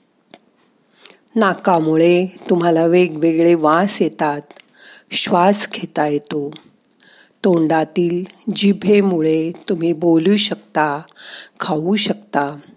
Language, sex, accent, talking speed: Marathi, female, native, 65 wpm